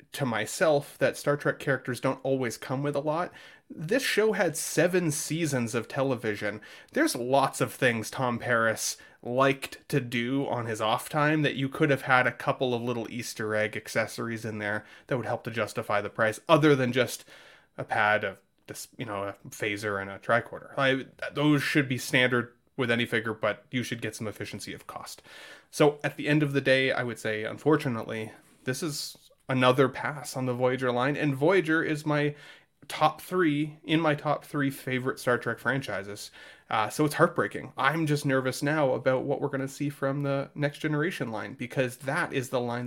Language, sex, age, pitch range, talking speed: English, male, 20-39, 115-145 Hz, 195 wpm